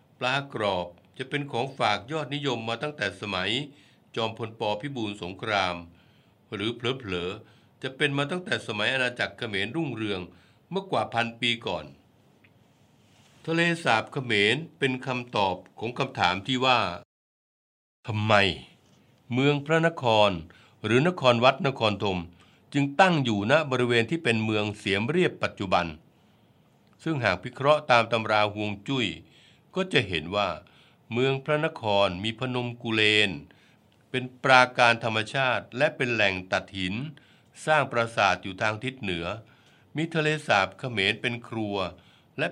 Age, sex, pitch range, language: 60-79, male, 100-135 Hz, Thai